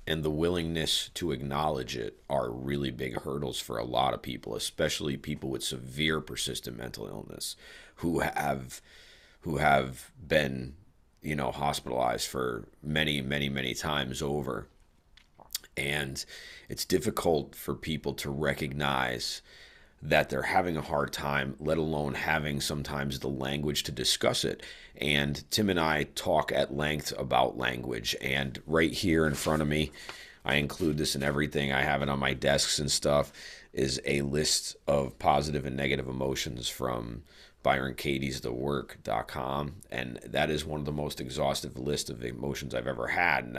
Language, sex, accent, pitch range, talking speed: English, male, American, 65-75 Hz, 155 wpm